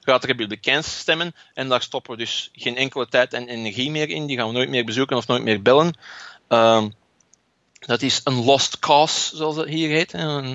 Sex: male